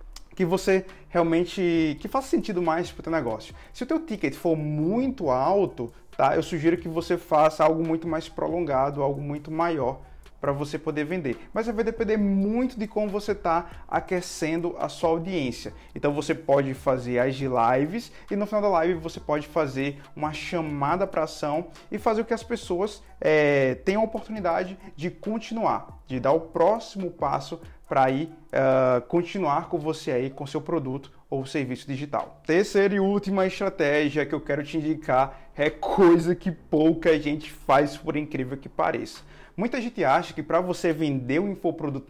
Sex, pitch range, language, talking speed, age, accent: male, 145-185 Hz, Portuguese, 175 wpm, 20-39, Brazilian